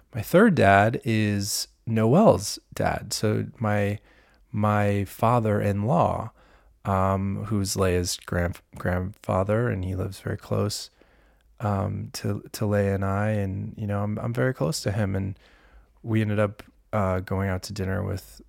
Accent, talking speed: American, 155 wpm